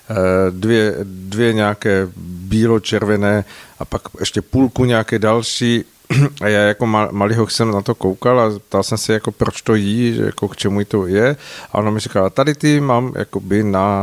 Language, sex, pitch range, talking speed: Czech, male, 105-120 Hz, 165 wpm